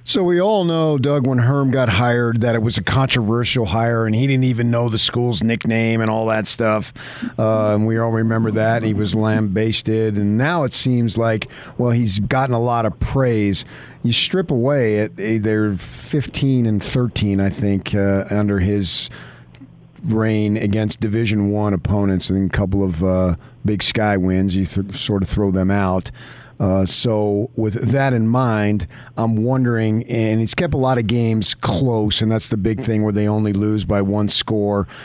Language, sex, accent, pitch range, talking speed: English, male, American, 100-120 Hz, 185 wpm